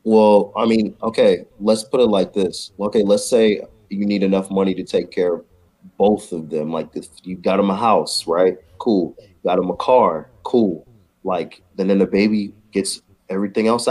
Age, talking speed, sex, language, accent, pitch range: 20-39, 195 wpm, male, English, American, 95-120 Hz